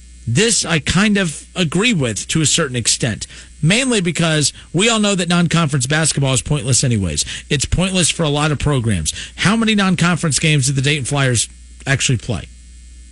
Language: English